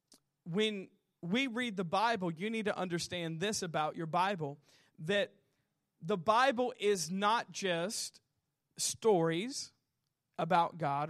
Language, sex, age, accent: English, male, 40-59, American